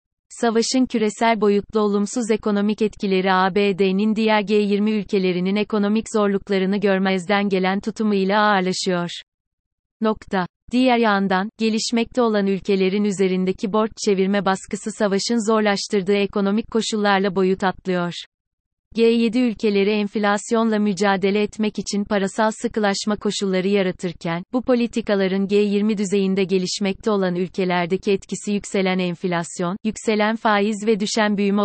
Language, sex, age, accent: Turkish, female, 30-49, native